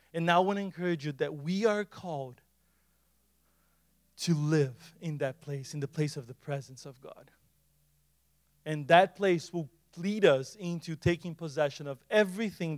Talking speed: 165 wpm